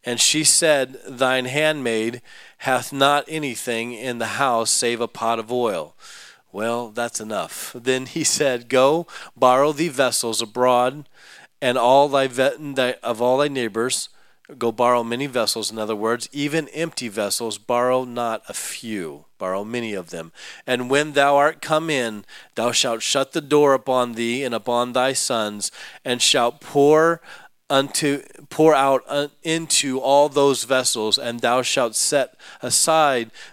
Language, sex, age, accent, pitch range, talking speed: English, male, 40-59, American, 120-145 Hz, 150 wpm